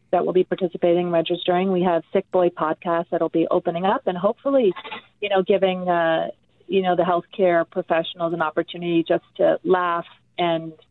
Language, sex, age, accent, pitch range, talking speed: English, female, 40-59, American, 165-185 Hz, 175 wpm